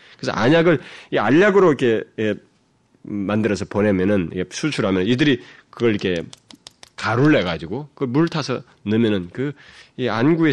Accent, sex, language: native, male, Korean